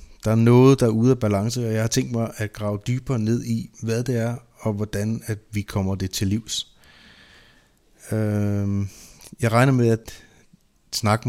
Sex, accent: male, native